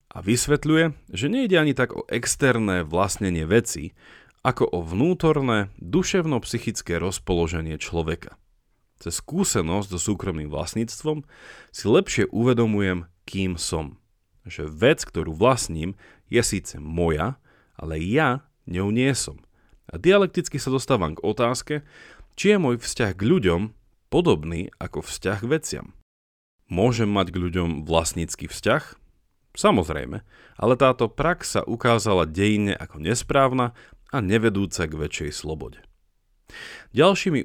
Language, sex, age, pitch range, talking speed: Slovak, male, 40-59, 85-125 Hz, 120 wpm